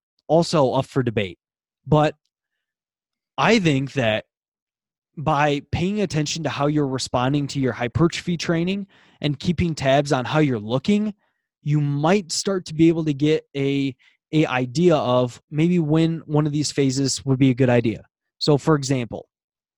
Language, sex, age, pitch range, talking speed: English, male, 20-39, 135-165 Hz, 160 wpm